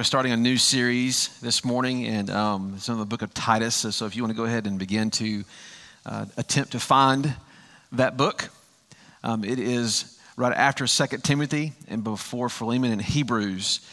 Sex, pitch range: male, 110-135 Hz